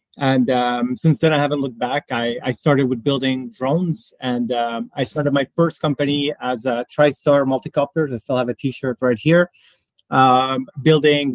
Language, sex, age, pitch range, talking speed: English, male, 30-49, 120-145 Hz, 180 wpm